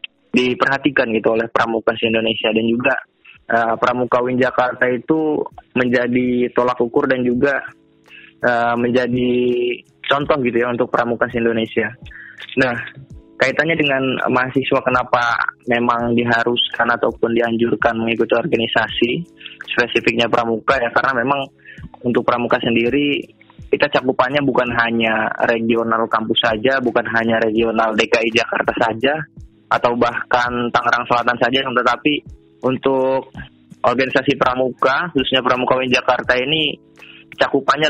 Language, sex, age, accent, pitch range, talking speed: Indonesian, male, 20-39, native, 115-130 Hz, 110 wpm